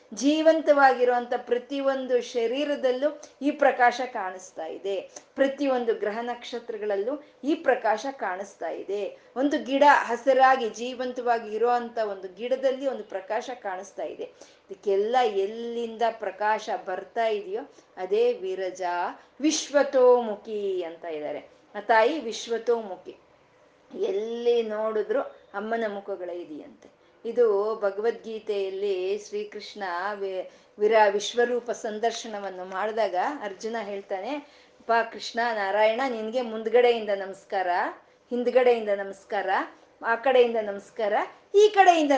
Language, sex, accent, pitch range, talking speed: Kannada, female, native, 210-265 Hz, 90 wpm